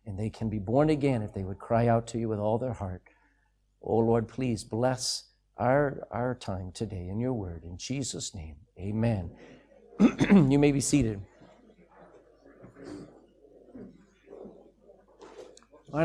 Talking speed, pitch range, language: 140 wpm, 150-240 Hz, English